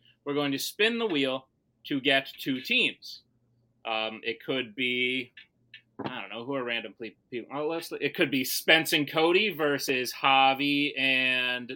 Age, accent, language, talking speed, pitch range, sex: 30-49, American, English, 155 wpm, 120-170 Hz, male